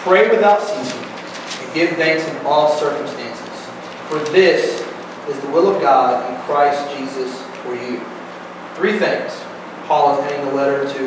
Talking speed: 155 wpm